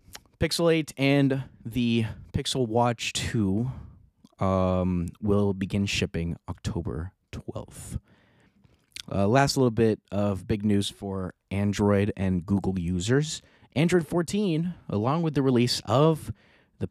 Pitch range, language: 95-130 Hz, English